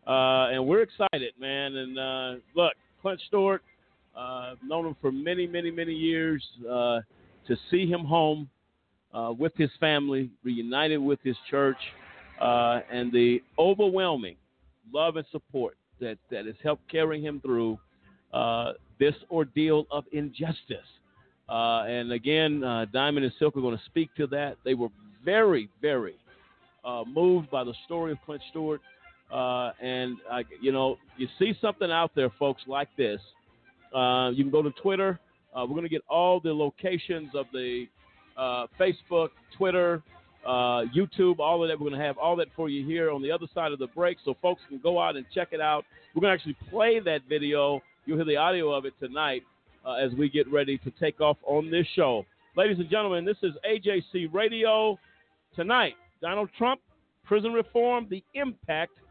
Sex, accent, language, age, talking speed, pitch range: male, American, English, 50-69, 180 wpm, 125-170 Hz